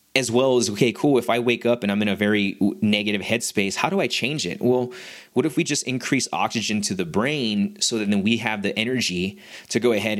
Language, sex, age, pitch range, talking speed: English, male, 20-39, 95-115 Hz, 240 wpm